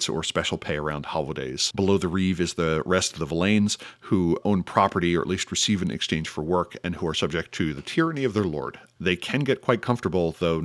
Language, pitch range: English, 80-100 Hz